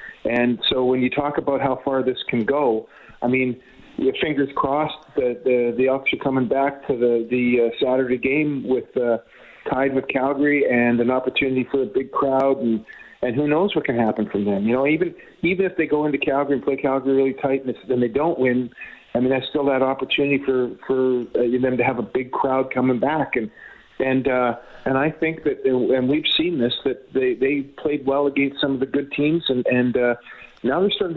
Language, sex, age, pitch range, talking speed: English, male, 40-59, 125-145 Hz, 220 wpm